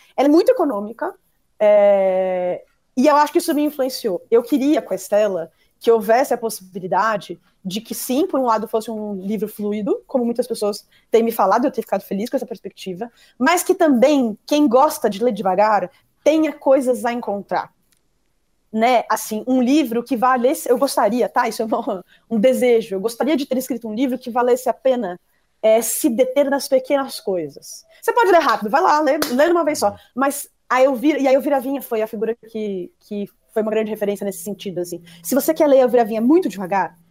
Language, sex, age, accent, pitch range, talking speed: Portuguese, female, 20-39, Brazilian, 220-285 Hz, 200 wpm